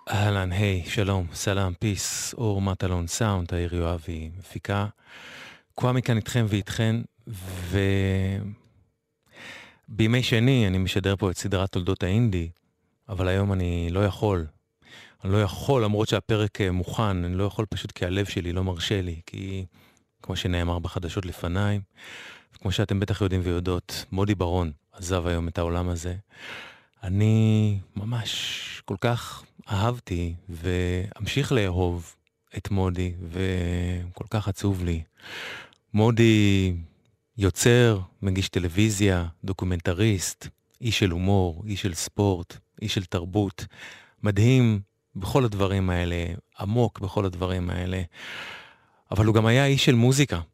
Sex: male